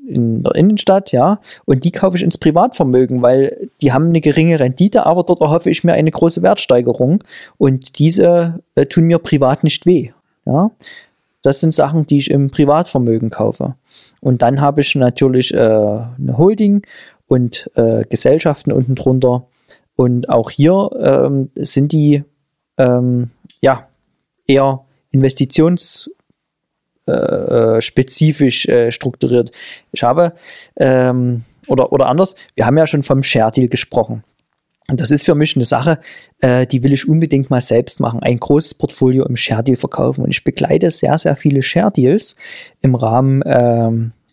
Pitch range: 125-165 Hz